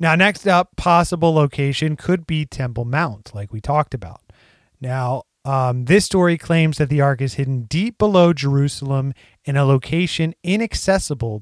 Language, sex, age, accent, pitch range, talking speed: English, male, 30-49, American, 130-165 Hz, 160 wpm